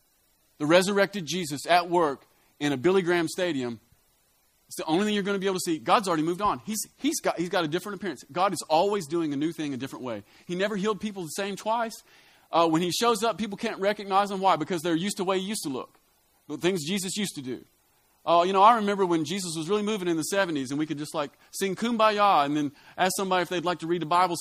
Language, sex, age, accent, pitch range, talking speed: English, male, 30-49, American, 180-230 Hz, 255 wpm